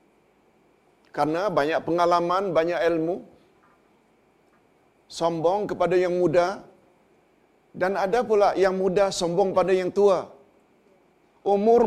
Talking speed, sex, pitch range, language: 95 wpm, male, 160-195 Hz, Malayalam